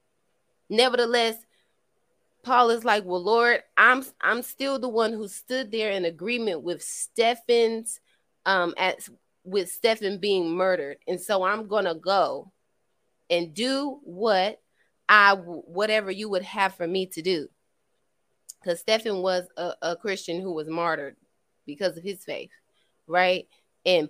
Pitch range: 170-220 Hz